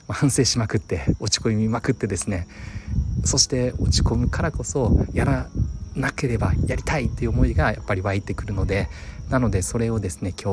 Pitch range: 95-110 Hz